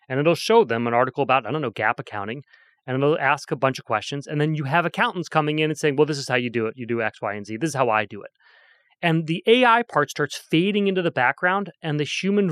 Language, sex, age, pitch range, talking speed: English, male, 30-49, 135-180 Hz, 285 wpm